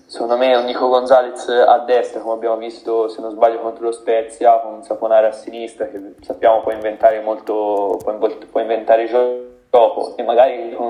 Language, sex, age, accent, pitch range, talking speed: Italian, male, 20-39, native, 110-120 Hz, 185 wpm